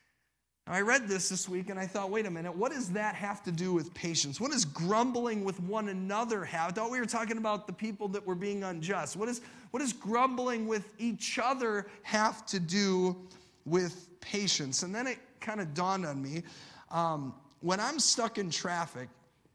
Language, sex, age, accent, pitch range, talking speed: English, male, 30-49, American, 170-220 Hz, 200 wpm